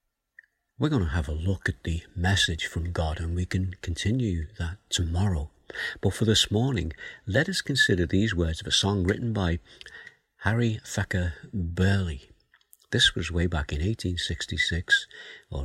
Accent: British